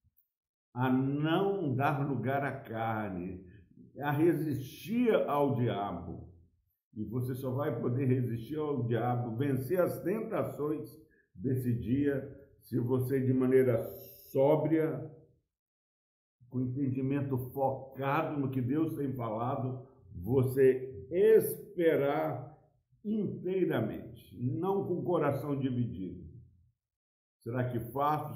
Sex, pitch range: male, 110-145 Hz